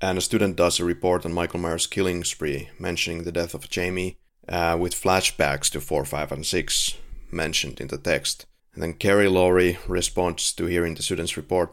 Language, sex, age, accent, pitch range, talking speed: English, male, 30-49, Finnish, 85-95 Hz, 195 wpm